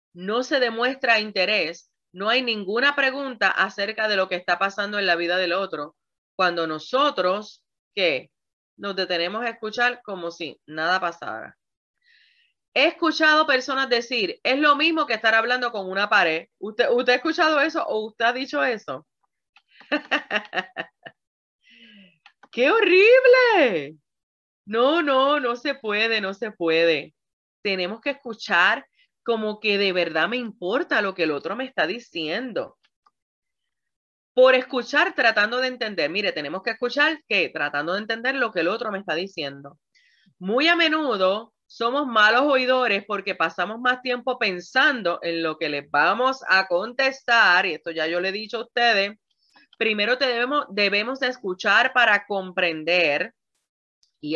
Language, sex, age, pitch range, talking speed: English, female, 30-49, 185-260 Hz, 145 wpm